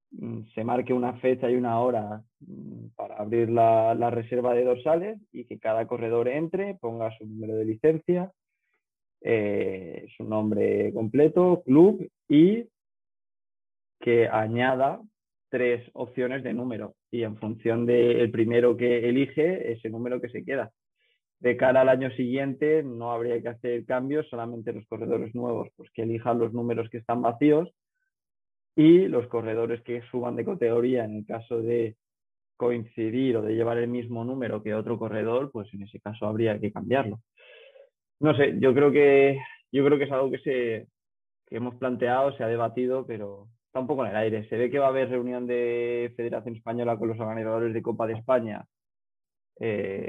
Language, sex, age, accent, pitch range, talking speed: Spanish, male, 20-39, Spanish, 115-130 Hz, 170 wpm